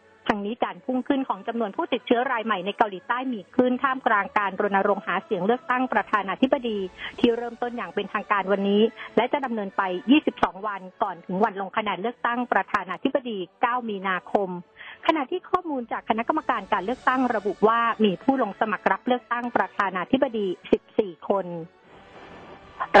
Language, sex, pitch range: Thai, female, 200-245 Hz